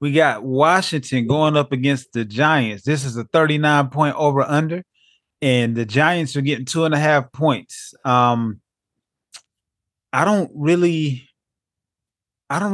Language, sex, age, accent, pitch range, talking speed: English, male, 20-39, American, 125-150 Hz, 135 wpm